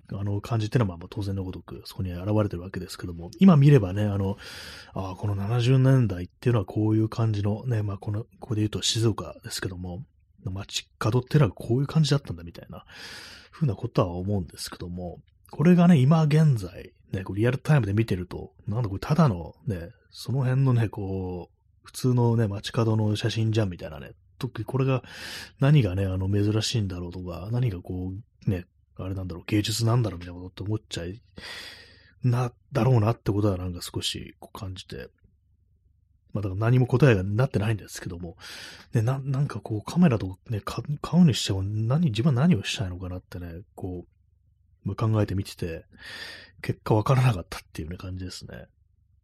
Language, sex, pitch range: Japanese, male, 90-120 Hz